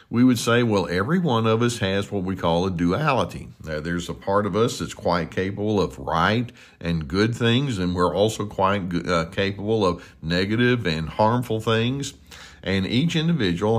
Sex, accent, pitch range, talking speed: male, American, 95-130 Hz, 185 wpm